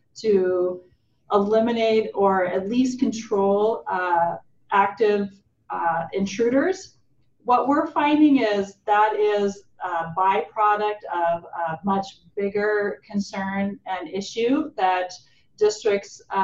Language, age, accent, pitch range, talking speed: English, 30-49, American, 185-220 Hz, 100 wpm